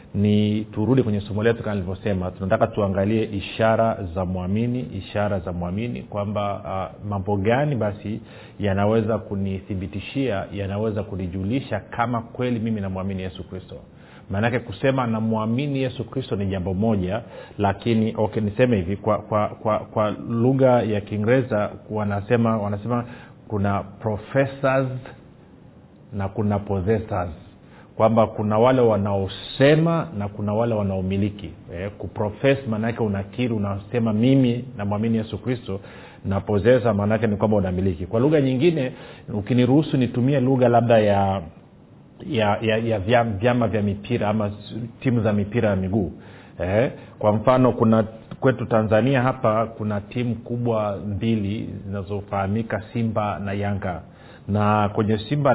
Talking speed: 130 wpm